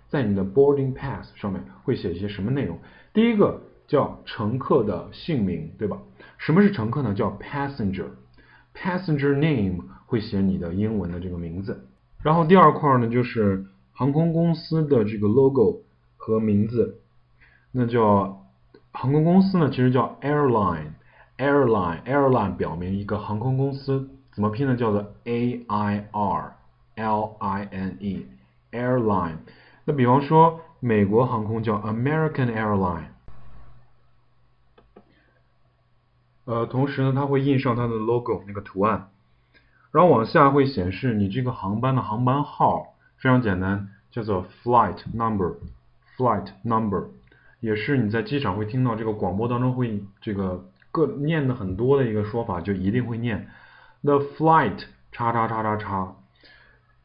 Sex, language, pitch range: male, Chinese, 100-135 Hz